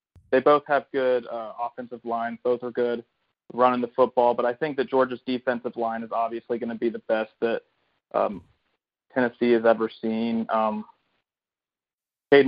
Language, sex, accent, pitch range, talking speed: English, male, American, 120-135 Hz, 165 wpm